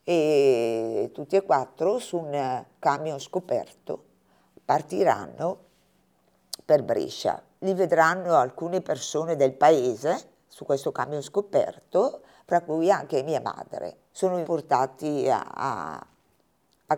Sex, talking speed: female, 105 wpm